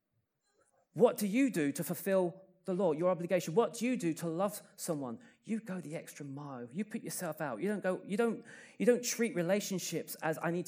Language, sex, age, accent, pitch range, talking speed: English, male, 30-49, British, 160-205 Hz, 215 wpm